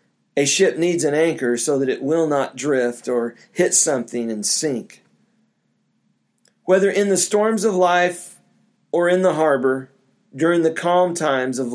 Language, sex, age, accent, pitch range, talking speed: English, male, 40-59, American, 135-180 Hz, 160 wpm